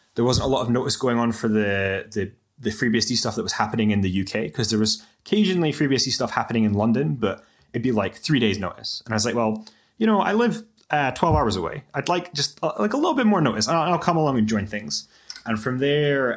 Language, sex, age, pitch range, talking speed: English, male, 20-39, 105-125 Hz, 255 wpm